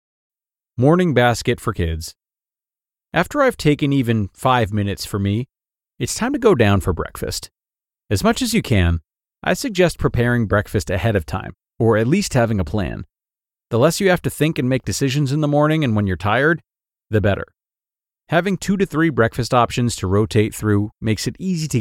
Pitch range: 95-135 Hz